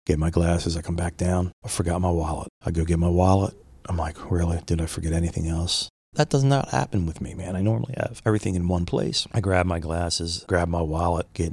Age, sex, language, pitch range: 30-49, male, English, 85-110 Hz